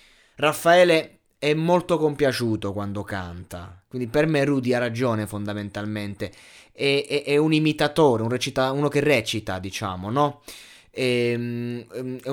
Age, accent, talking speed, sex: 20-39, native, 130 wpm, male